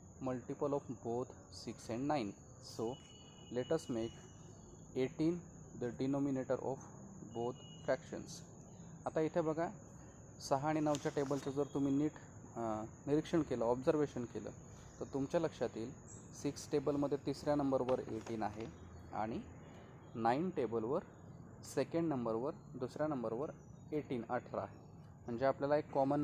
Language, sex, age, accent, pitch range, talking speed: Marathi, male, 20-39, native, 115-145 Hz, 120 wpm